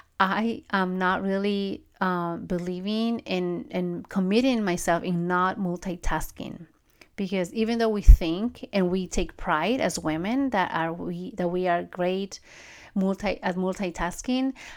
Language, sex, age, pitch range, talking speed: English, female, 30-49, 175-200 Hz, 140 wpm